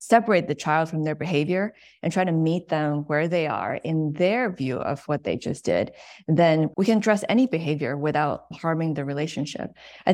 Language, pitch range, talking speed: English, 150-180 Hz, 195 wpm